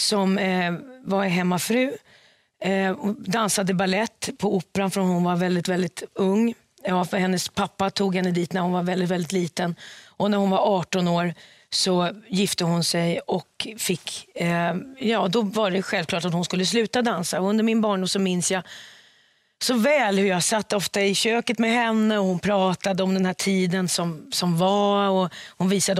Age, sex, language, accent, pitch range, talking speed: 30-49, female, English, Swedish, 180-210 Hz, 185 wpm